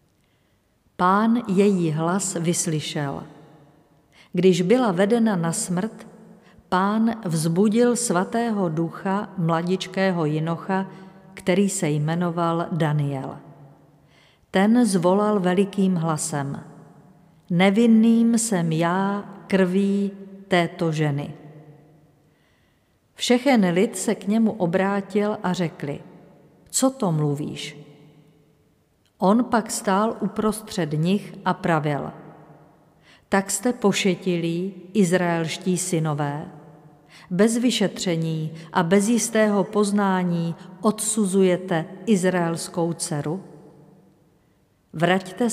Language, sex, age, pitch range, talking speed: Czech, female, 50-69, 160-205 Hz, 80 wpm